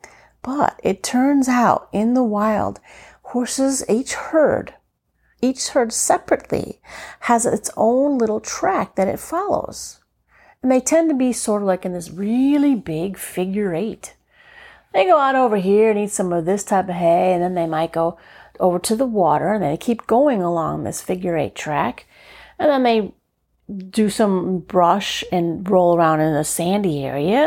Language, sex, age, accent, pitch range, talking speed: English, female, 40-59, American, 180-255 Hz, 175 wpm